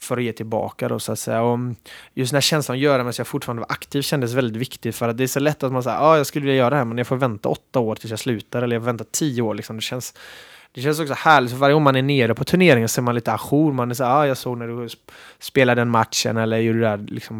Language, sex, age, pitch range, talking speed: Swedish, male, 20-39, 115-130 Hz, 315 wpm